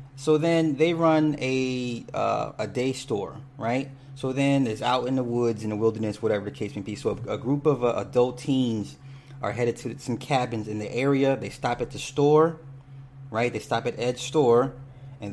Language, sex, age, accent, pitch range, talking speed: English, male, 30-49, American, 110-135 Hz, 210 wpm